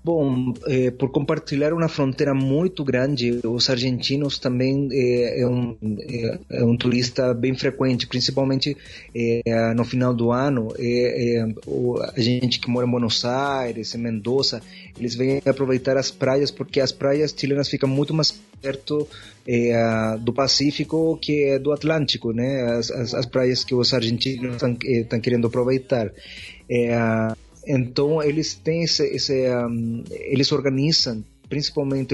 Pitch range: 120-140 Hz